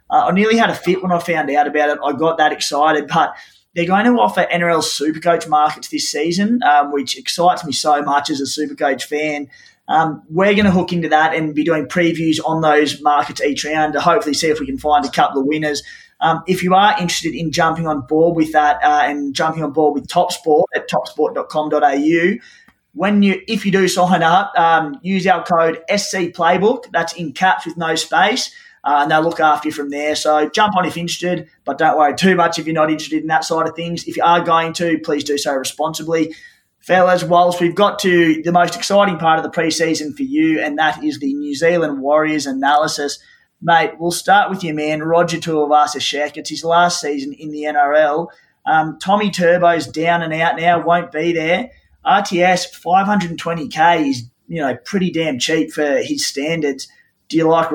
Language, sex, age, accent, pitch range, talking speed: English, male, 20-39, Australian, 150-180 Hz, 210 wpm